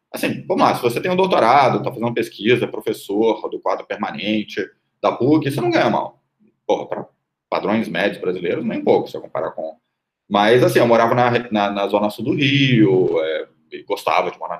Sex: male